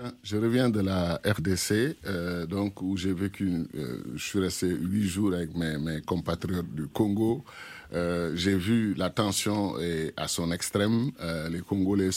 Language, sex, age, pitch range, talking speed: French, male, 50-69, 90-110 Hz, 170 wpm